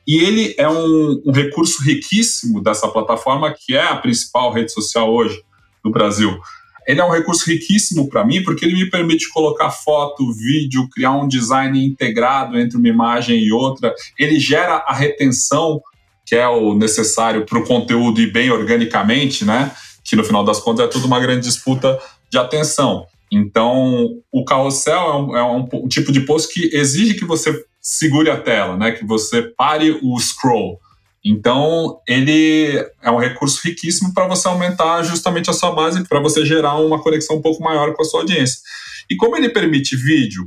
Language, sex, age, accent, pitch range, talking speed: Portuguese, male, 20-39, Brazilian, 120-165 Hz, 180 wpm